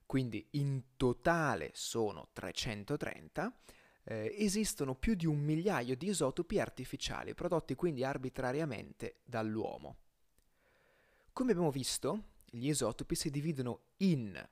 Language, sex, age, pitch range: Italian, male, 30-49, 125-175 Hz